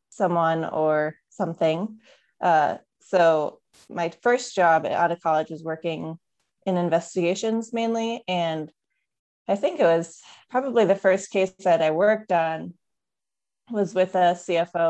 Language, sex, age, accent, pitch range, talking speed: English, female, 20-39, American, 165-195 Hz, 135 wpm